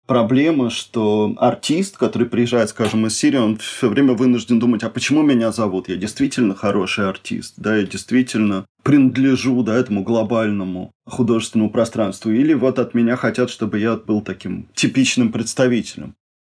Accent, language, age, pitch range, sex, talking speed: native, Russian, 20-39, 110-130 Hz, male, 150 wpm